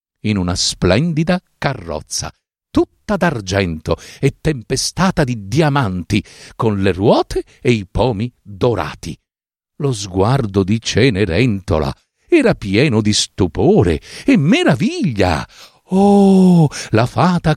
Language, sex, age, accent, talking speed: Italian, male, 50-69, native, 100 wpm